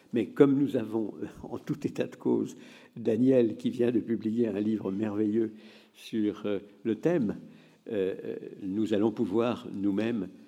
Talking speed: 150 wpm